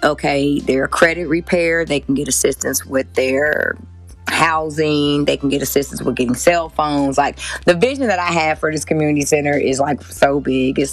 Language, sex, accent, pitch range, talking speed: English, female, American, 130-160 Hz, 185 wpm